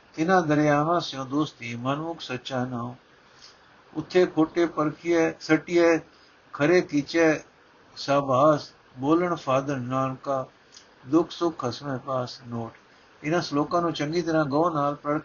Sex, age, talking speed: male, 60-79, 125 wpm